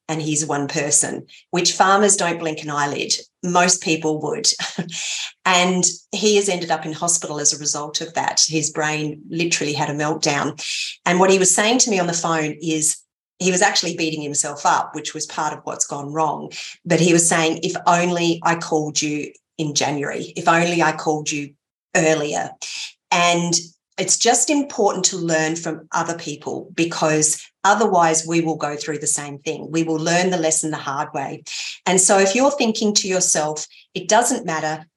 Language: English